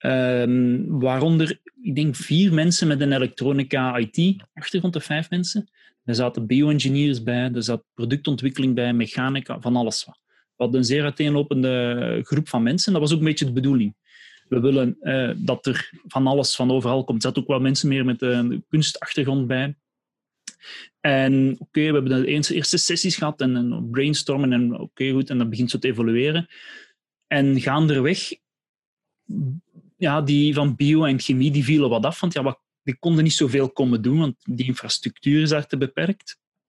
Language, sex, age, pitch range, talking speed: Dutch, male, 30-49, 130-165 Hz, 180 wpm